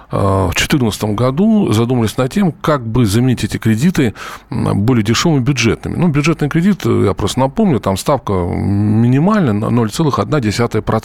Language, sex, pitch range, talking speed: Russian, male, 105-155 Hz, 130 wpm